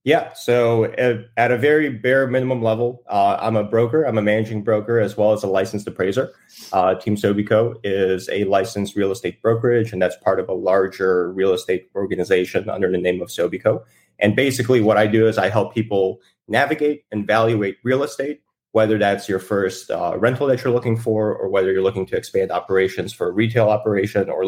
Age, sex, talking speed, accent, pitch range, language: 30-49, male, 200 wpm, American, 105-125 Hz, English